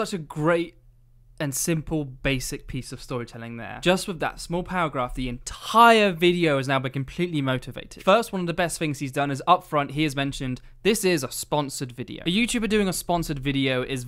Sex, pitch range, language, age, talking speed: male, 135-180 Hz, English, 20-39, 205 wpm